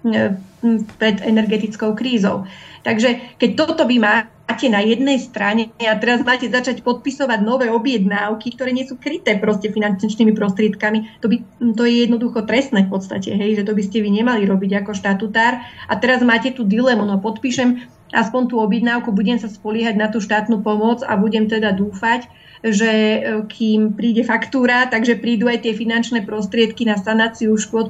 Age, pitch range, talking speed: 40-59, 210-235 Hz, 165 wpm